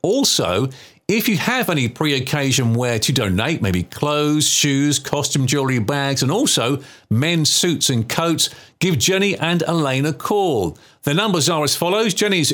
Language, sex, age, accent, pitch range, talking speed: English, male, 40-59, British, 115-155 Hz, 160 wpm